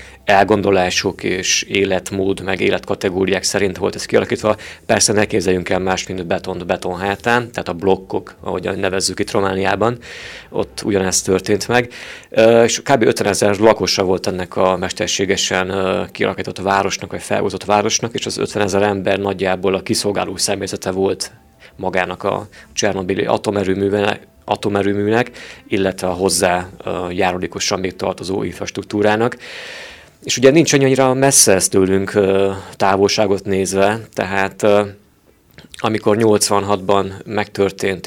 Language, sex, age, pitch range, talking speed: Hungarian, male, 30-49, 95-105 Hz, 115 wpm